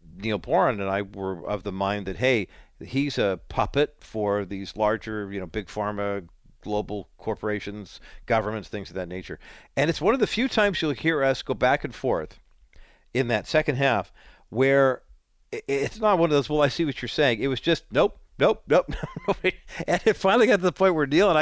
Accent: American